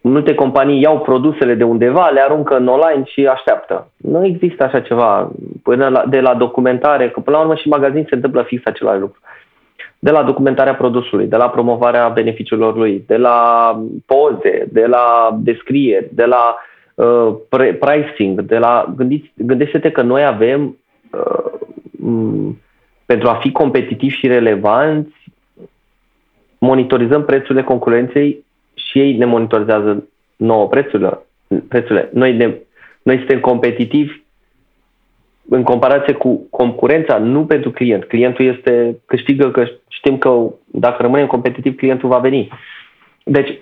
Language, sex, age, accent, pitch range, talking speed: Romanian, male, 20-39, native, 120-145 Hz, 140 wpm